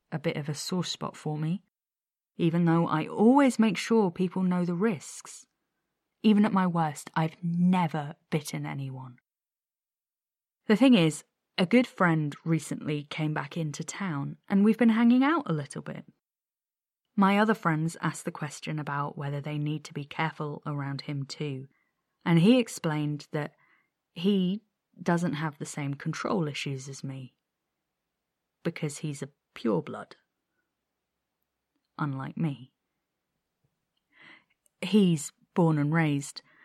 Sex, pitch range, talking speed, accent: female, 150-185 Hz, 140 wpm, British